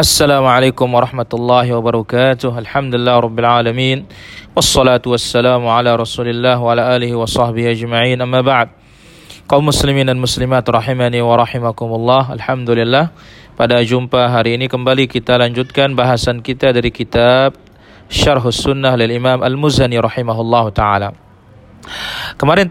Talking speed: 115 wpm